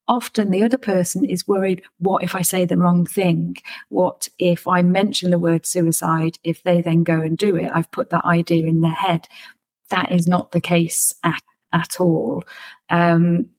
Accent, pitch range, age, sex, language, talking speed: British, 175-230 Hz, 40-59, female, English, 190 wpm